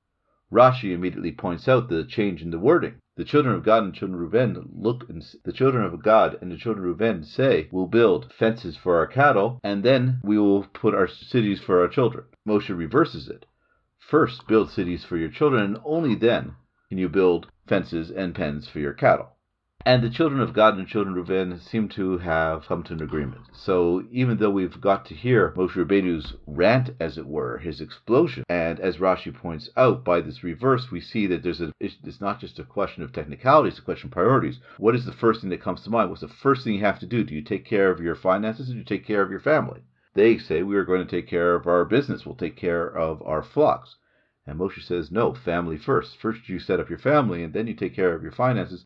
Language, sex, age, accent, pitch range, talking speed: English, male, 50-69, American, 90-115 Hz, 240 wpm